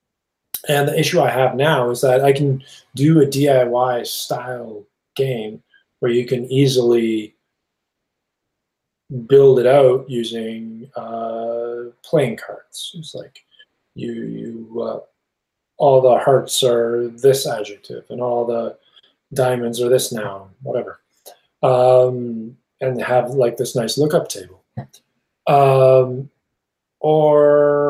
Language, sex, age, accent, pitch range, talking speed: English, male, 20-39, American, 120-150 Hz, 120 wpm